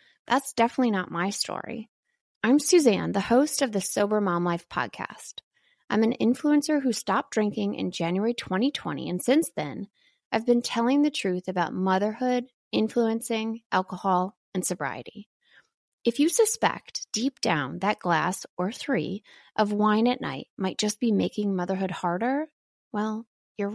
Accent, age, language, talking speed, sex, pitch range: American, 20-39, English, 150 wpm, female, 185-245 Hz